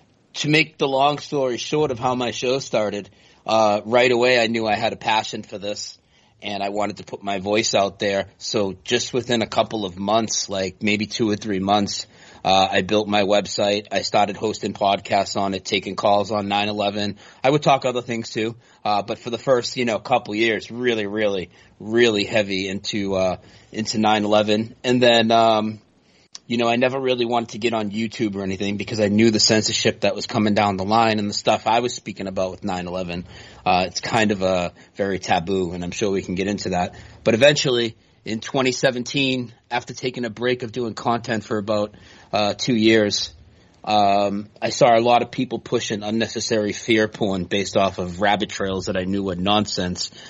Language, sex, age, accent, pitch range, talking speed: English, male, 30-49, American, 100-115 Hz, 200 wpm